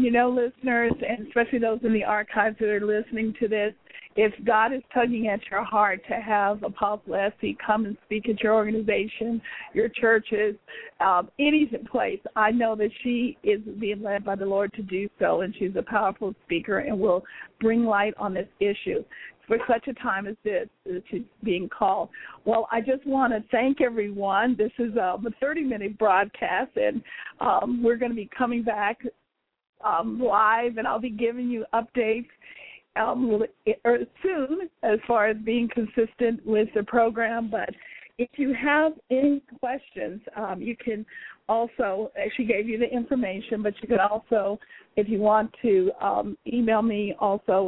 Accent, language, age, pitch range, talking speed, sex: American, English, 50-69, 210-240 Hz, 170 wpm, female